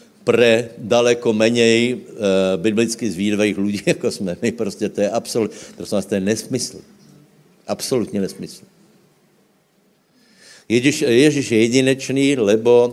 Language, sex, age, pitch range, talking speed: Slovak, male, 60-79, 100-115 Hz, 105 wpm